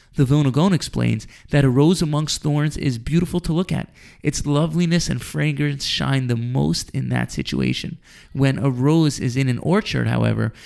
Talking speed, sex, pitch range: 175 wpm, male, 130-160 Hz